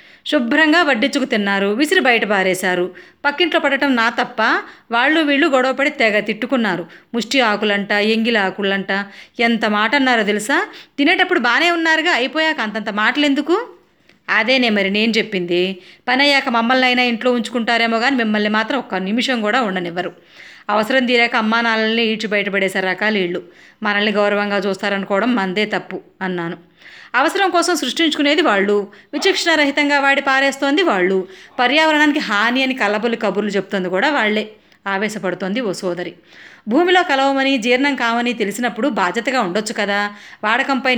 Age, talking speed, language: 30-49, 130 wpm, Telugu